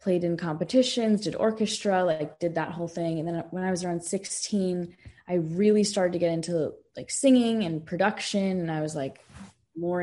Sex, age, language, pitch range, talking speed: female, 20-39, English, 155-180 Hz, 190 wpm